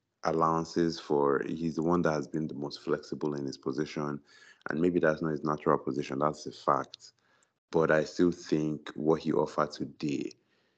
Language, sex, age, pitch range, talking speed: English, male, 30-49, 75-90 Hz, 180 wpm